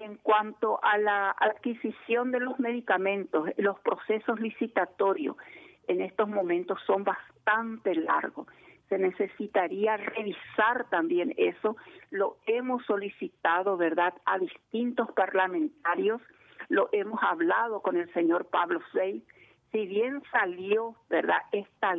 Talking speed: 115 wpm